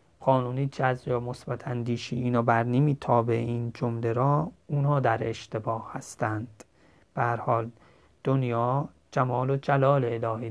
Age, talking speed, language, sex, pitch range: 30-49, 120 wpm, Persian, male, 115-135 Hz